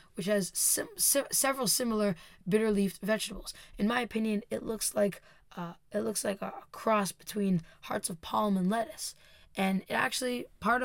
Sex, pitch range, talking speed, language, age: female, 185-220 Hz, 175 wpm, English, 10-29